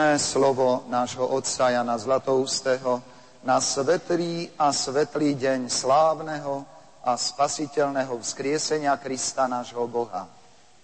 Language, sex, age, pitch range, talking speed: Slovak, male, 50-69, 130-160 Hz, 95 wpm